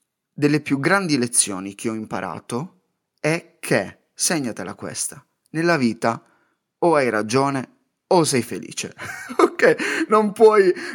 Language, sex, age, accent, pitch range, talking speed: Italian, male, 30-49, native, 110-175 Hz, 120 wpm